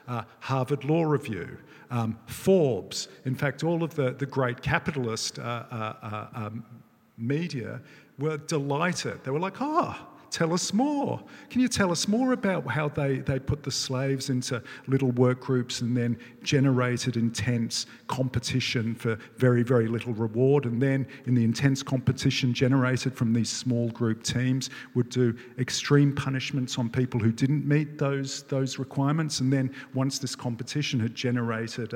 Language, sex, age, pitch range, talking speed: English, male, 50-69, 115-140 Hz, 160 wpm